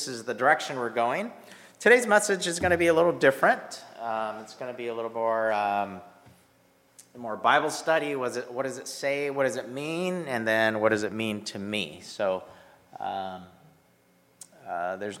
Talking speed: 190 wpm